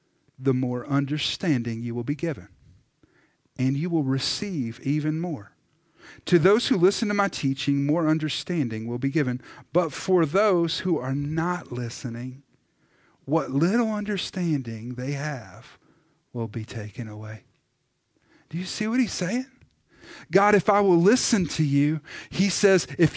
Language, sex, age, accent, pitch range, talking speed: English, male, 50-69, American, 140-205 Hz, 150 wpm